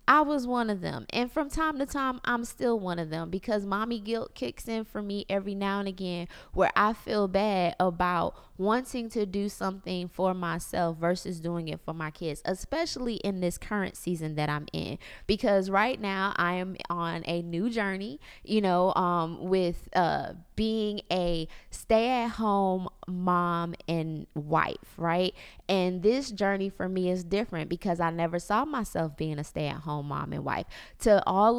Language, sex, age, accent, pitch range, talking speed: English, female, 20-39, American, 175-210 Hz, 175 wpm